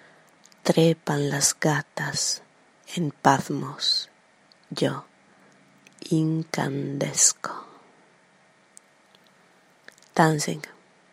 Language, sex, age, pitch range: Italian, female, 30-49, 150-170 Hz